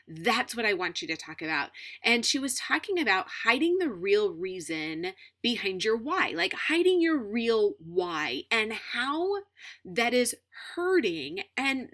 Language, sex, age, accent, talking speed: English, female, 30-49, American, 155 wpm